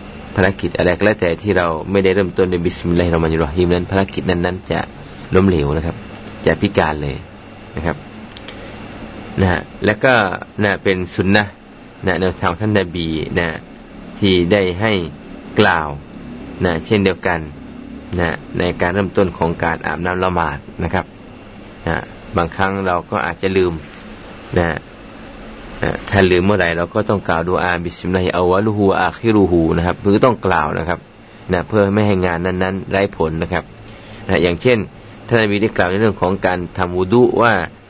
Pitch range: 85-105 Hz